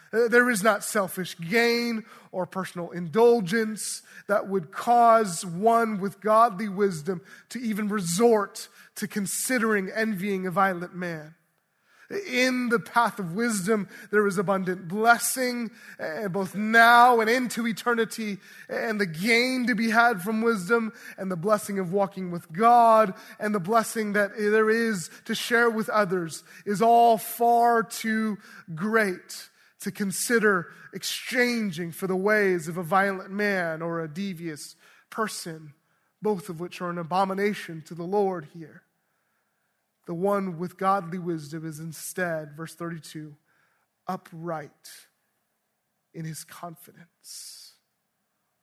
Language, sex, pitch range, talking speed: English, male, 175-225 Hz, 130 wpm